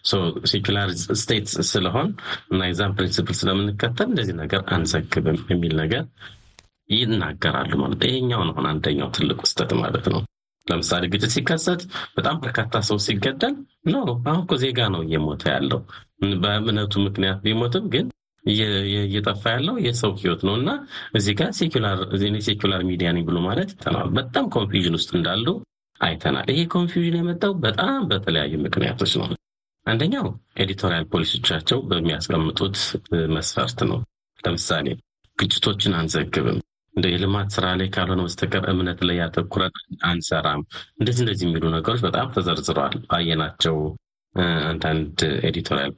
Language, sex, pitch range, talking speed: Amharic, male, 85-110 Hz, 105 wpm